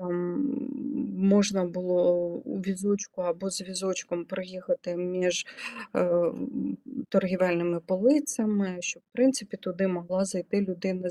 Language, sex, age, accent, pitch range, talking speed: Ukrainian, female, 30-49, native, 185-235 Hz, 105 wpm